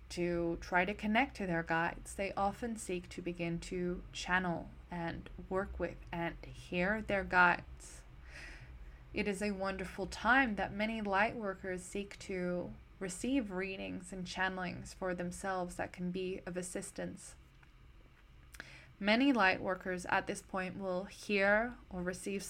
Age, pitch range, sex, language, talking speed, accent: 20-39, 170-195 Hz, female, English, 140 wpm, American